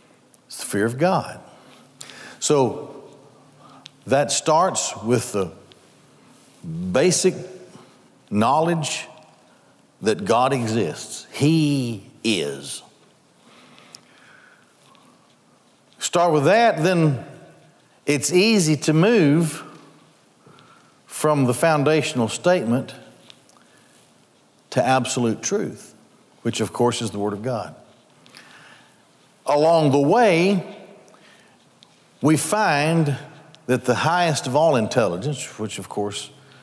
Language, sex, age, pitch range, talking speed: English, male, 60-79, 125-175 Hz, 90 wpm